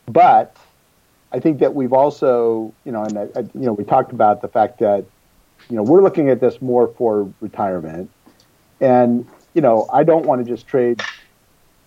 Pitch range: 115-140 Hz